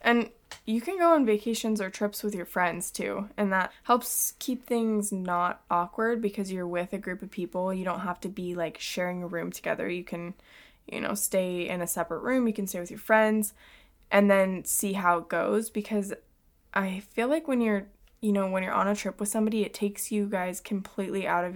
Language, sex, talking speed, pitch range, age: English, female, 220 wpm, 180-210 Hz, 20-39